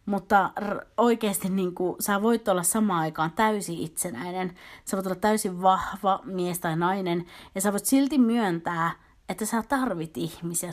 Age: 30-49